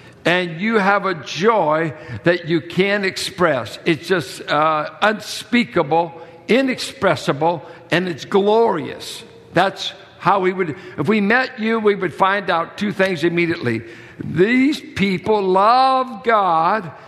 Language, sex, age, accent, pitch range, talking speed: English, male, 60-79, American, 165-215 Hz, 125 wpm